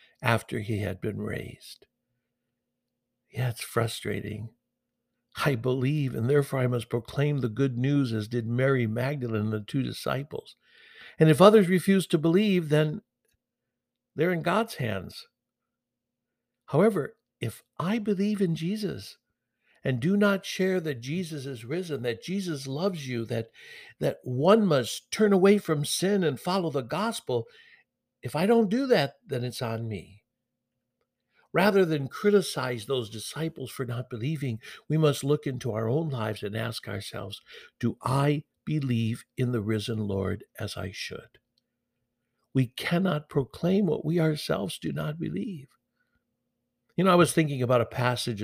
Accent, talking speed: American, 150 wpm